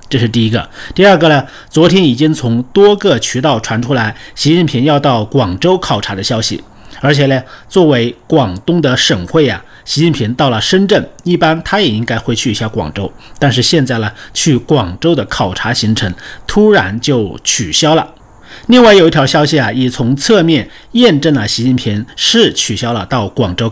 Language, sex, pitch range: Chinese, male, 110-145 Hz